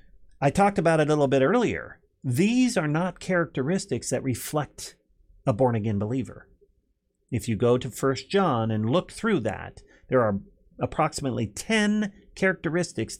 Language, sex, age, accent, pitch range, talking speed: English, male, 40-59, American, 105-155 Hz, 145 wpm